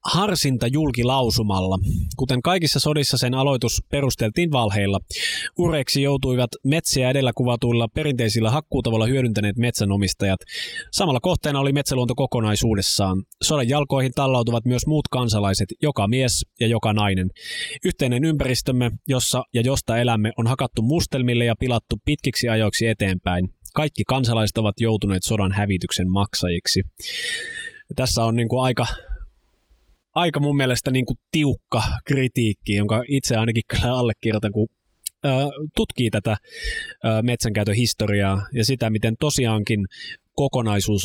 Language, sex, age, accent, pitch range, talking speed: Finnish, male, 20-39, native, 105-135 Hz, 120 wpm